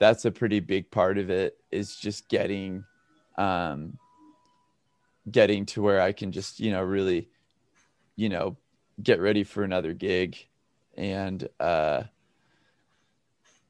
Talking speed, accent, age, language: 125 wpm, American, 20-39, English